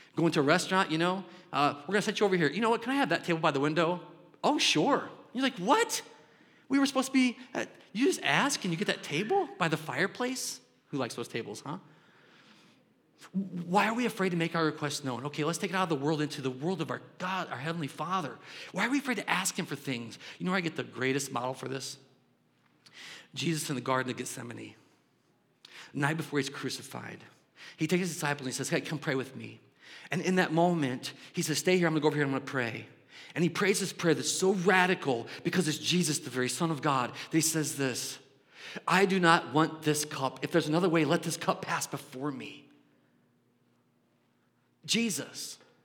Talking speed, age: 230 wpm, 40-59